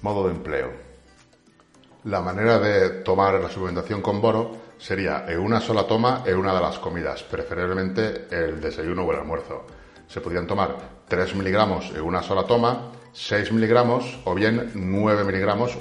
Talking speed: 160 wpm